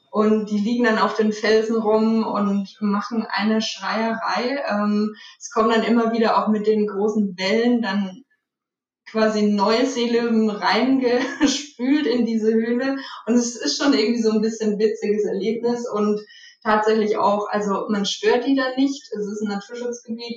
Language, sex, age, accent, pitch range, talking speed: German, female, 20-39, German, 195-230 Hz, 160 wpm